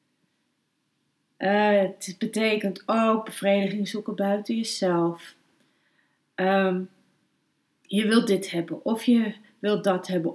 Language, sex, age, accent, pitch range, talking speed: Dutch, female, 30-49, Dutch, 190-250 Hz, 105 wpm